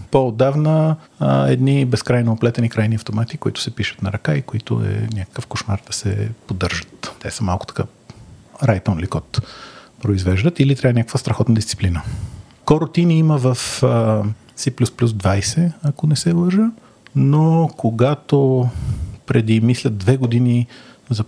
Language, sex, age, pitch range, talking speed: Bulgarian, male, 40-59, 110-135 Hz, 135 wpm